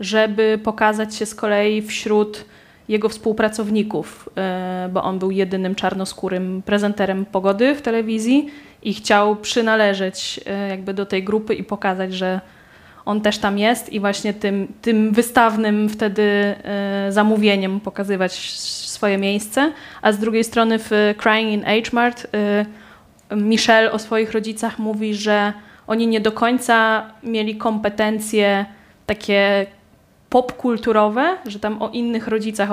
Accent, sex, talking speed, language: native, female, 125 wpm, Polish